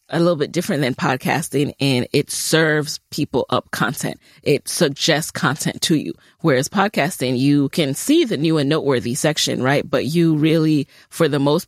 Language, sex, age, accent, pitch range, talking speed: English, female, 30-49, American, 145-185 Hz, 175 wpm